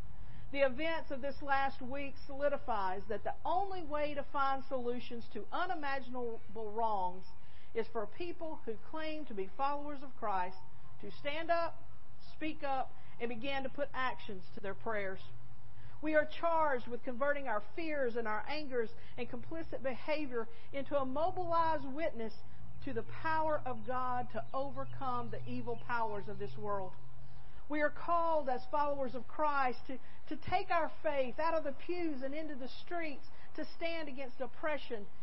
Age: 50-69